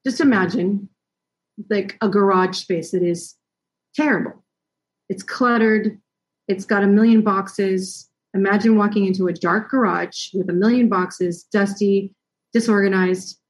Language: English